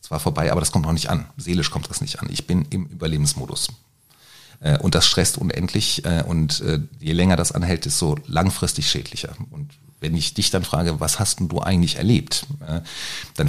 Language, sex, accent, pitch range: German, male, German, 85-125 Hz